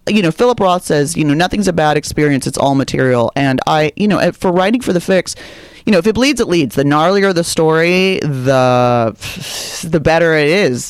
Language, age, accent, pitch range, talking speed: English, 30-49, American, 130-180 Hz, 215 wpm